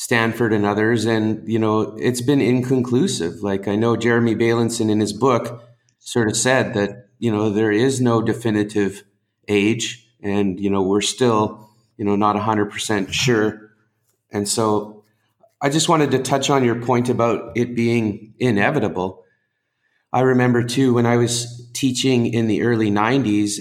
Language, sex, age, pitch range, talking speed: English, male, 30-49, 105-120 Hz, 165 wpm